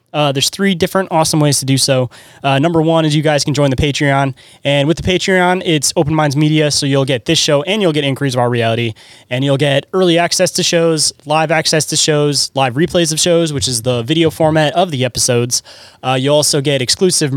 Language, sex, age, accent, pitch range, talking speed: English, male, 20-39, American, 135-165 Hz, 230 wpm